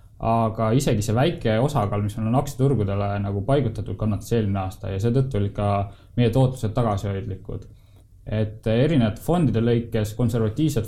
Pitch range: 105-125 Hz